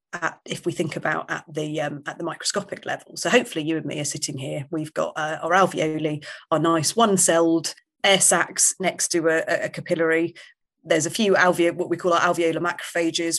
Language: English